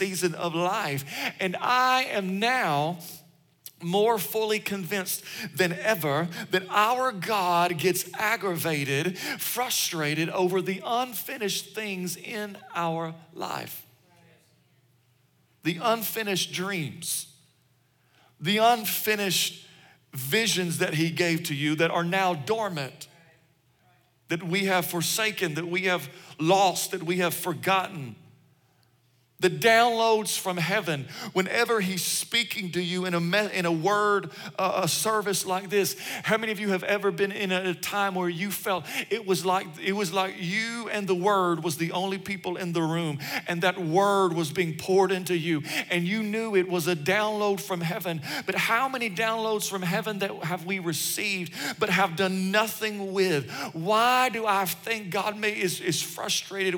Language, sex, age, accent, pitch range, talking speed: English, male, 50-69, American, 170-205 Hz, 150 wpm